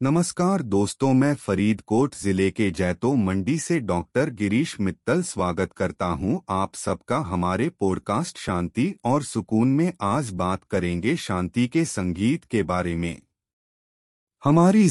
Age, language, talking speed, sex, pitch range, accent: 30-49, Hindi, 135 wpm, male, 90-140 Hz, native